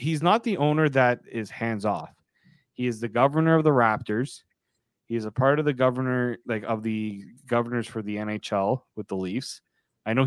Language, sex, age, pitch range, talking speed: English, male, 20-39, 110-135 Hz, 200 wpm